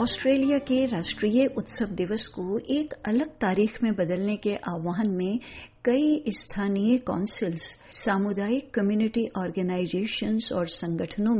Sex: female